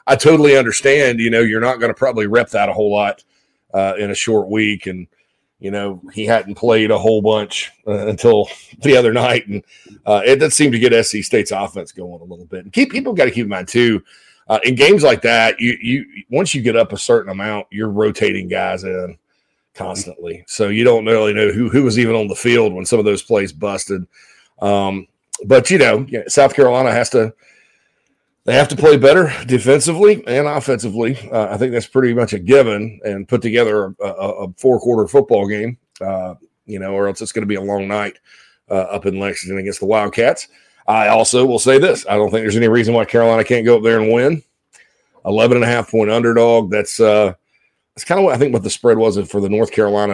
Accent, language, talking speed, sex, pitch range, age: American, English, 220 wpm, male, 100-120 Hz, 40-59